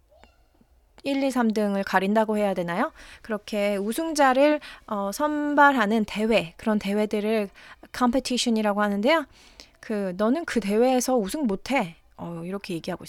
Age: 30-49